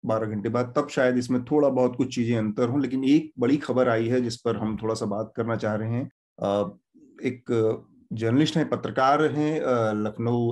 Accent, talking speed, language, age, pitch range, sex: native, 200 wpm, Hindi, 40-59, 120-165 Hz, male